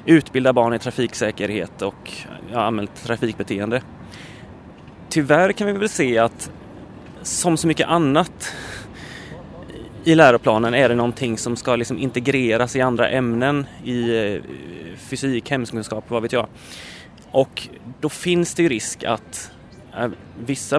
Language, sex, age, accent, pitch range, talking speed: Swedish, male, 30-49, native, 115-150 Hz, 130 wpm